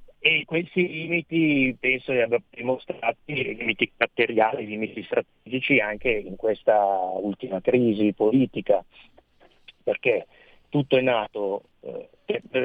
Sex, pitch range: male, 110-150 Hz